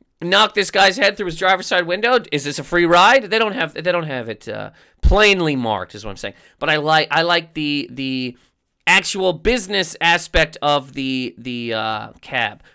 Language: English